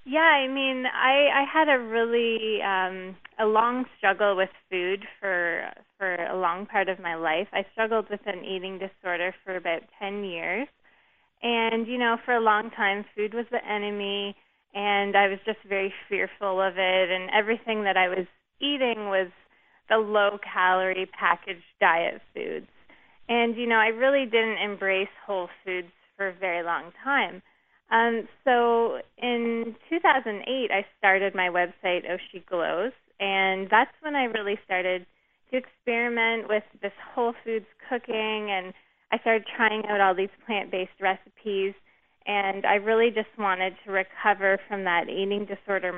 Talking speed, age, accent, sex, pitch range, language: 155 wpm, 20-39, American, female, 190-230 Hz, English